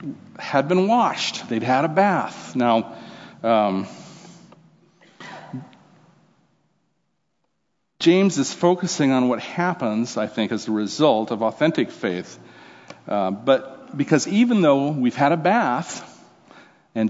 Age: 50-69